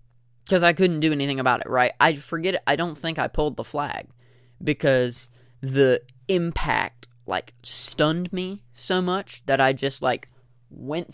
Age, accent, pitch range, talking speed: 20-39, American, 120-145 Hz, 165 wpm